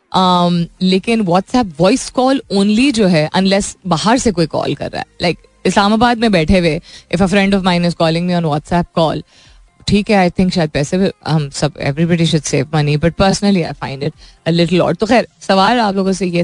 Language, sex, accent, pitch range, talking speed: Hindi, female, native, 170-210 Hz, 100 wpm